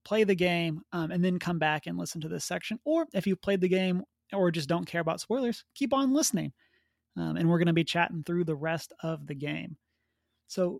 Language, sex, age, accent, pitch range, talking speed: English, male, 30-49, American, 160-195 Hz, 235 wpm